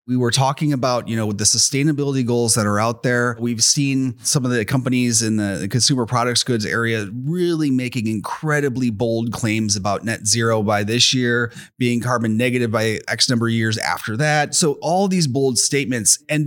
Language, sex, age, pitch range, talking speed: English, male, 30-49, 115-140 Hz, 195 wpm